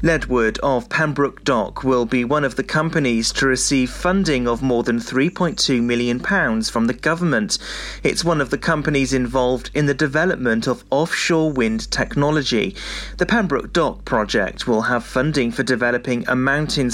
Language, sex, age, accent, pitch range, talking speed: English, male, 30-49, British, 125-160 Hz, 160 wpm